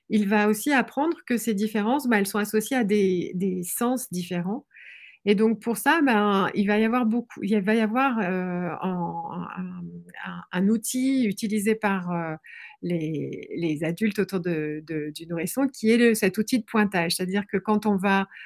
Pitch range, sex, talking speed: 185-240 Hz, female, 190 wpm